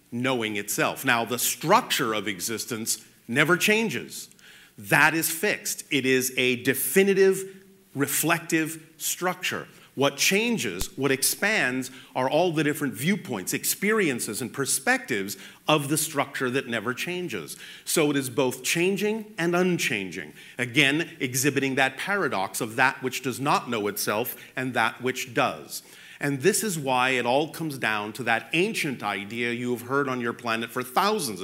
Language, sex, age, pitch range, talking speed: German, male, 40-59, 125-175 Hz, 150 wpm